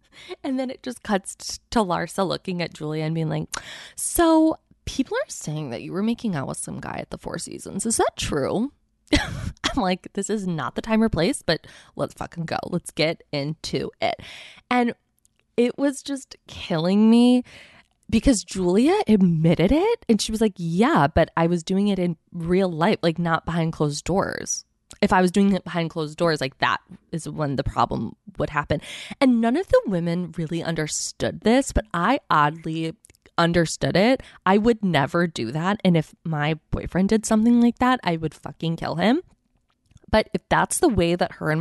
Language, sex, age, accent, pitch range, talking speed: English, female, 20-39, American, 160-225 Hz, 190 wpm